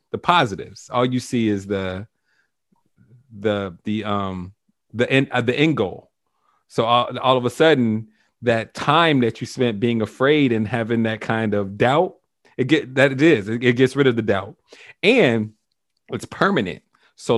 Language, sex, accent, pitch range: English, male, American, 110-130 Hz